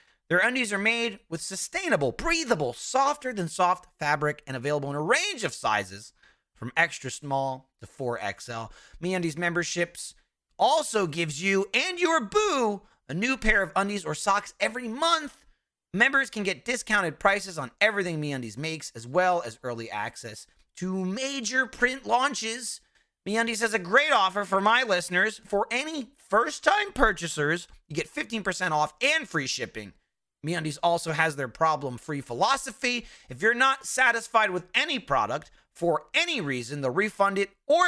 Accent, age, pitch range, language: American, 30-49, 155-225 Hz, English